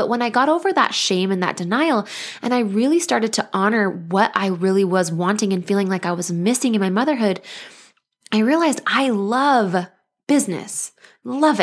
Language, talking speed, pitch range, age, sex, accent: English, 185 wpm, 190-240 Hz, 20-39, female, American